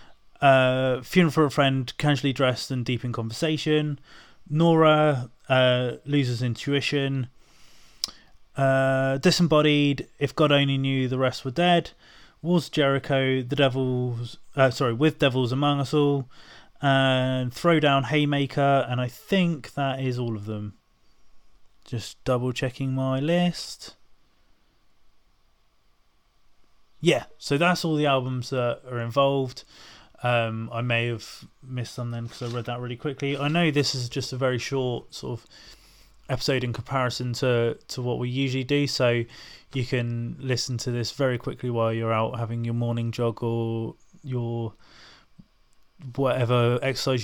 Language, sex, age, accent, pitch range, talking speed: English, male, 20-39, British, 120-140 Hz, 140 wpm